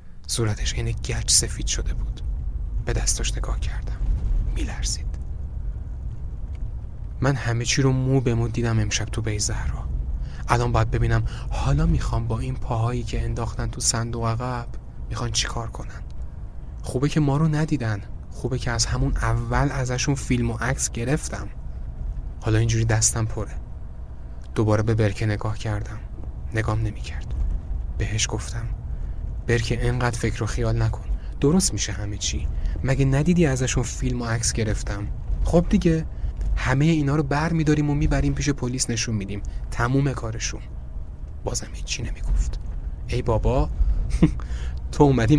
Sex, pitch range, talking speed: male, 75-125 Hz, 140 wpm